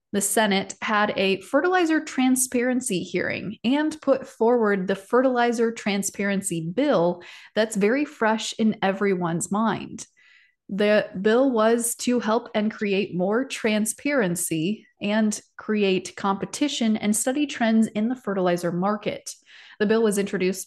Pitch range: 190-240 Hz